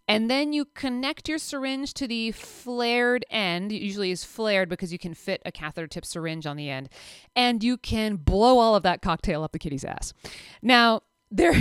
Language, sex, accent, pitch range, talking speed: English, female, American, 150-235 Hz, 200 wpm